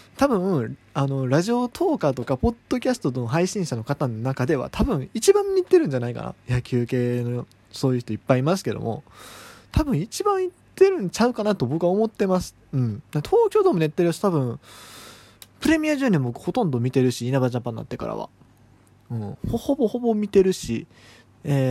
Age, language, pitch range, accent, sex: 20-39, Japanese, 125-190 Hz, native, male